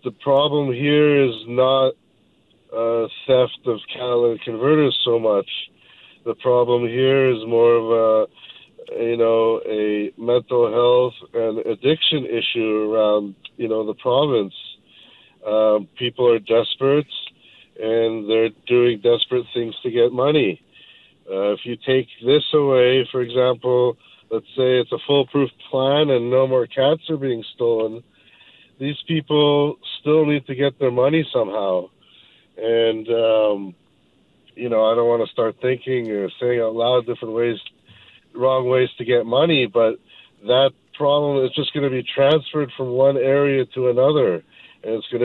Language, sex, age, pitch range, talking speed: English, male, 50-69, 115-135 Hz, 150 wpm